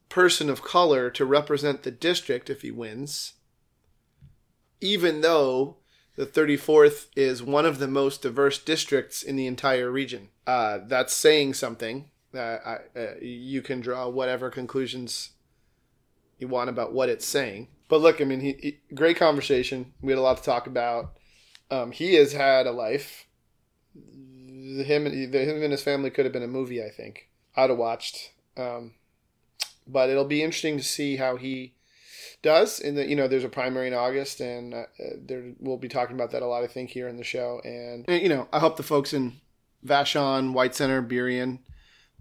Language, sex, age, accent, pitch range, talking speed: English, male, 30-49, American, 125-145 Hz, 180 wpm